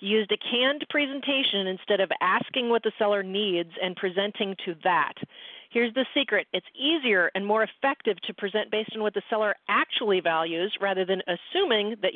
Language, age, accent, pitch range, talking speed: English, 40-59, American, 185-255 Hz, 180 wpm